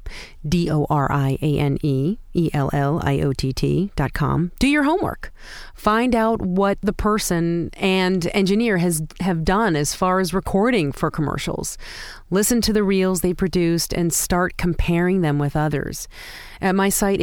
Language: English